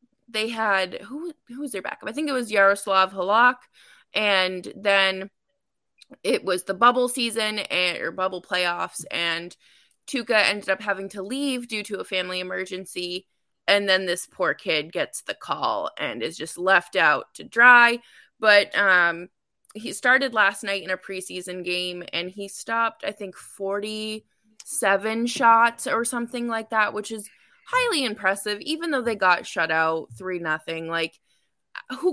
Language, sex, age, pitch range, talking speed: English, female, 20-39, 180-235 Hz, 160 wpm